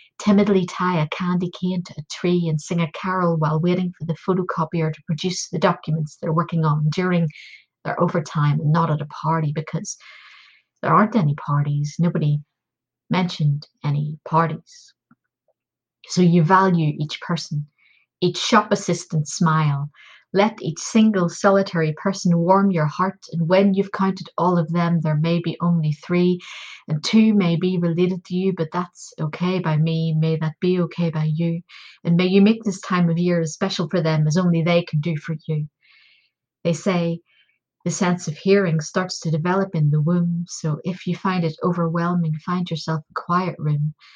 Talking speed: 180 wpm